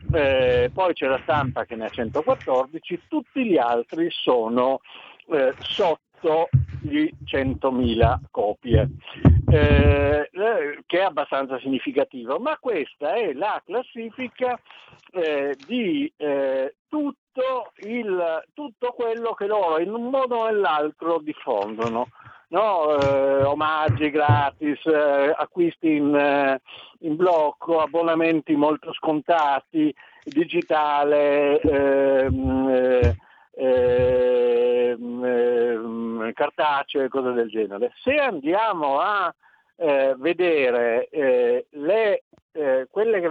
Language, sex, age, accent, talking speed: Italian, male, 60-79, native, 105 wpm